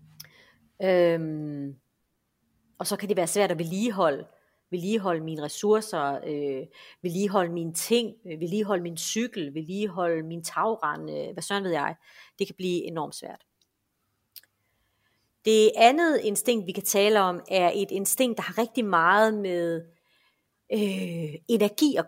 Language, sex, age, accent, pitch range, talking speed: Danish, female, 30-49, native, 175-225 Hz, 140 wpm